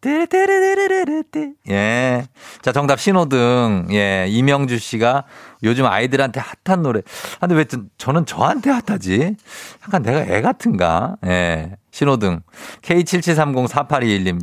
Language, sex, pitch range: Korean, male, 105-145 Hz